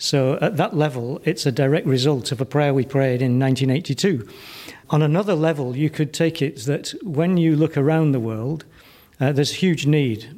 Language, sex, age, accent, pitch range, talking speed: English, male, 50-69, British, 130-155 Hz, 195 wpm